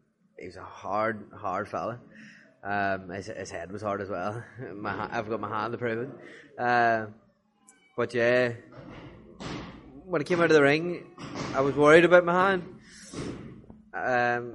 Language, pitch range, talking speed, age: English, 110-140 Hz, 155 wpm, 20-39